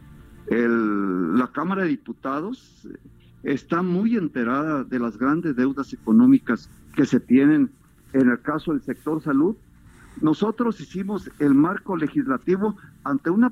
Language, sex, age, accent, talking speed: Spanish, male, 50-69, Mexican, 130 wpm